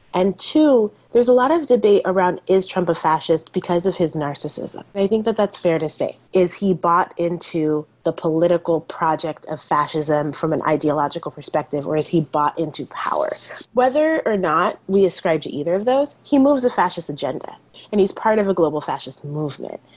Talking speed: 190 wpm